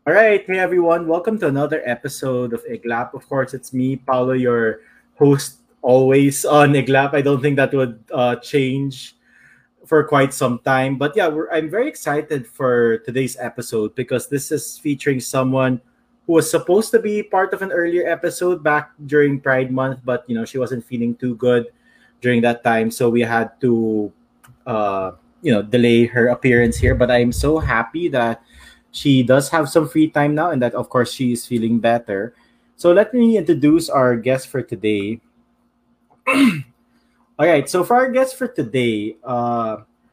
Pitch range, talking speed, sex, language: 125-160 Hz, 175 wpm, male, English